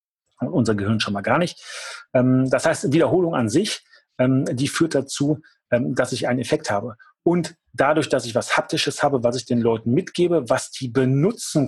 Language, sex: German, male